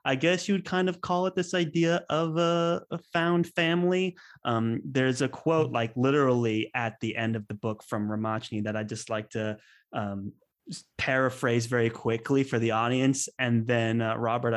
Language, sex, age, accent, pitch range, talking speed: English, male, 20-39, American, 115-135 Hz, 190 wpm